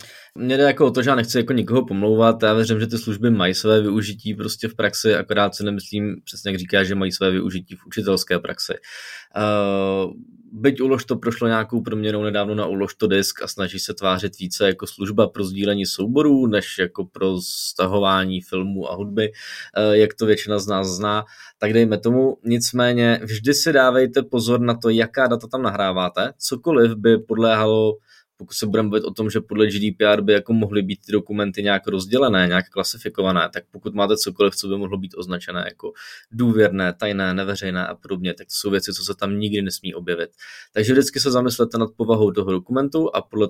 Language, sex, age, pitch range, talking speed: Czech, male, 20-39, 100-120 Hz, 190 wpm